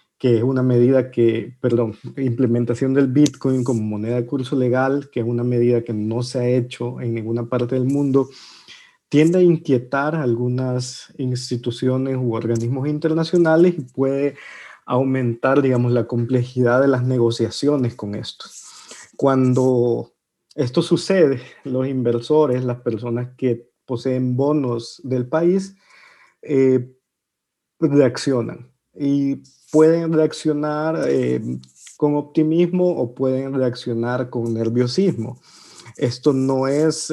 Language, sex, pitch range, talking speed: Spanish, male, 120-145 Hz, 125 wpm